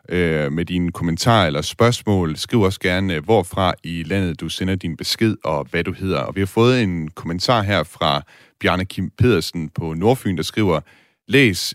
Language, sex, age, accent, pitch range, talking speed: Danish, male, 30-49, native, 85-105 Hz, 180 wpm